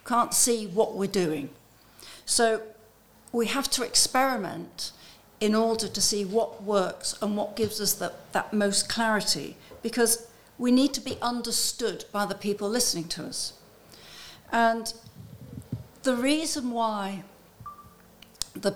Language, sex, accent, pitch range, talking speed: English, female, British, 195-235 Hz, 130 wpm